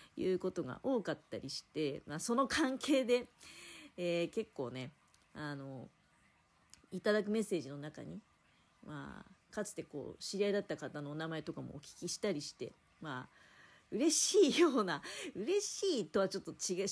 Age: 40-59